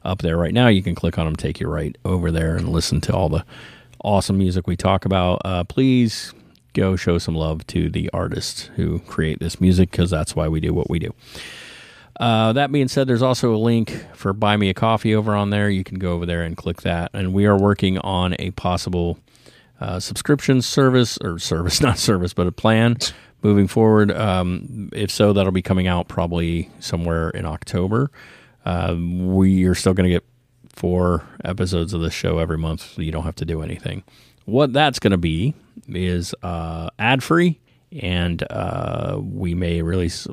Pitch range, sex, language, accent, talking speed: 85-110 Hz, male, English, American, 200 wpm